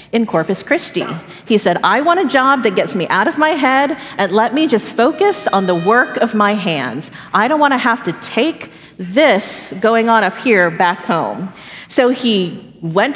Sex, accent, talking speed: female, American, 195 wpm